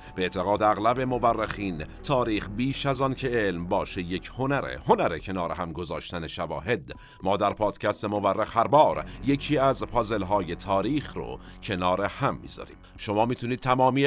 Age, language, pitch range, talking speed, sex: 50-69, Persian, 95-130 Hz, 150 wpm, male